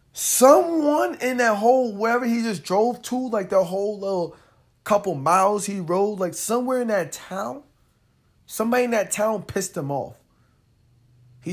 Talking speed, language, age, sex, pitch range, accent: 155 wpm, English, 20-39, male, 130-185 Hz, American